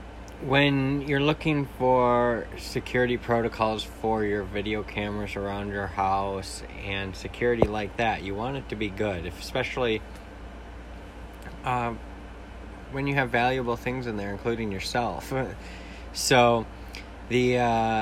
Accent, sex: American, male